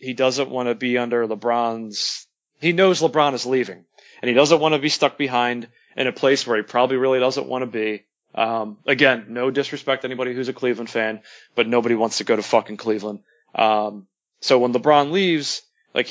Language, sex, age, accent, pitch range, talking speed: English, male, 30-49, American, 120-150 Hz, 210 wpm